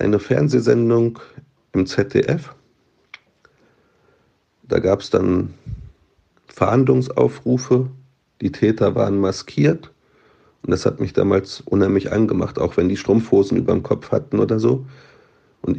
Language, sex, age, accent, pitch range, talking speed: German, male, 40-59, German, 100-130 Hz, 120 wpm